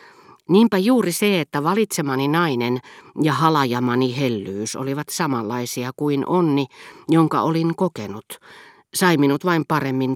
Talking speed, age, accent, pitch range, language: 120 wpm, 50-69, native, 125-155 Hz, Finnish